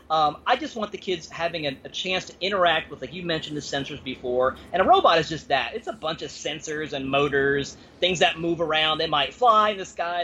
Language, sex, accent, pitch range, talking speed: English, male, American, 150-210 Hz, 245 wpm